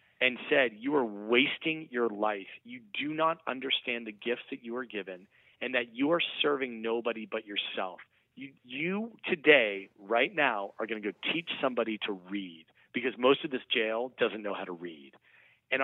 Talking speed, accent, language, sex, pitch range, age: 185 wpm, American, English, male, 105-130 Hz, 40-59